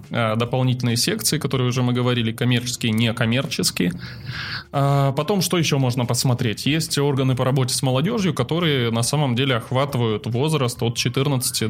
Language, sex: Russian, male